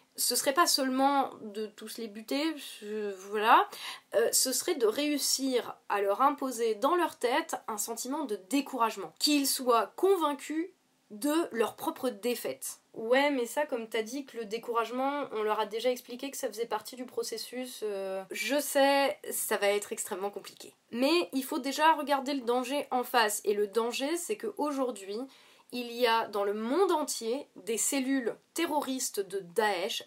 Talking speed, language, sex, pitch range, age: 170 wpm, French, female, 230-295 Hz, 20-39